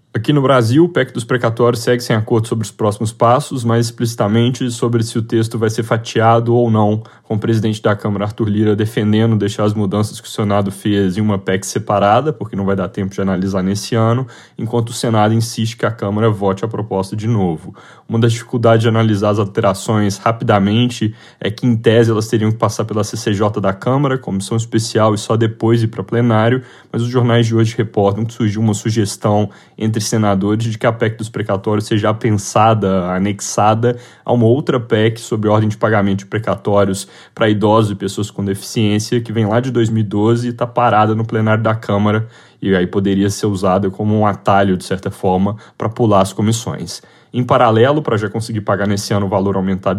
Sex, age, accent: male, 10-29, Brazilian